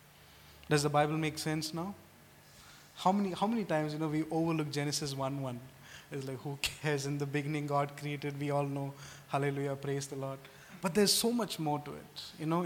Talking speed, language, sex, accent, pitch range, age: 200 wpm, English, male, Indian, 140-170 Hz, 20-39